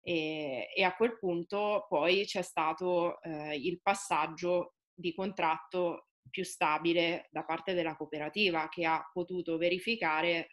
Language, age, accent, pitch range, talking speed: Italian, 20-39, native, 160-185 Hz, 130 wpm